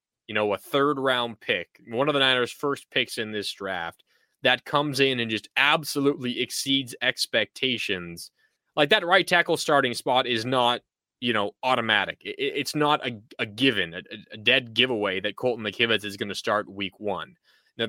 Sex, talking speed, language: male, 180 wpm, English